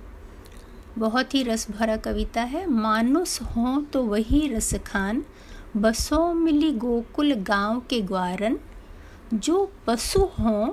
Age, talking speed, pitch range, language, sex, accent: 50-69, 115 wpm, 210-280 Hz, Hindi, female, native